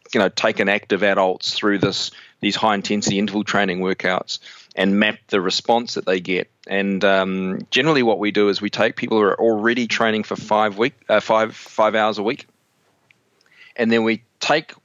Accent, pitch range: Australian, 95-110 Hz